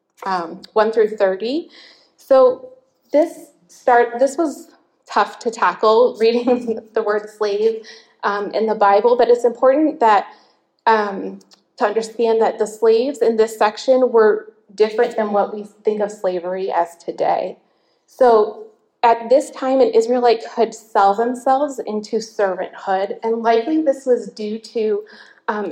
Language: English